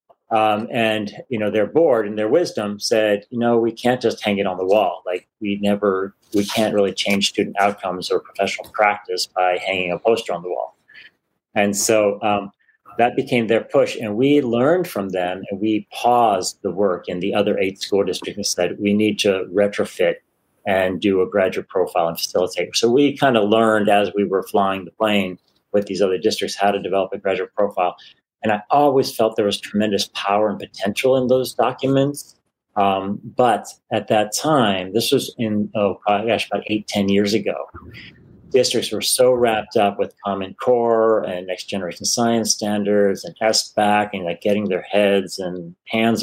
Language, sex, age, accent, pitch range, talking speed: English, male, 40-59, American, 100-115 Hz, 190 wpm